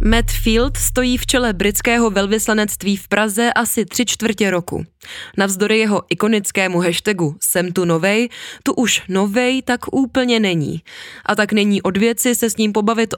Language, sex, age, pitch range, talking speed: Czech, female, 20-39, 180-230 Hz, 155 wpm